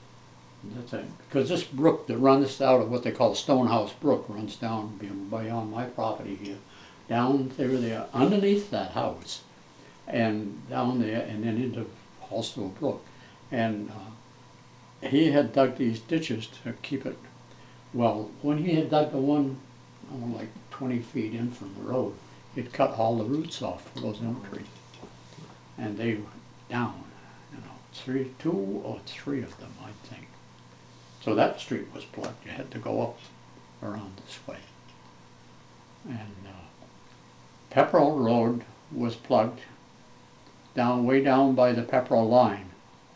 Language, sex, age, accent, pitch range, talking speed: English, male, 60-79, American, 105-130 Hz, 155 wpm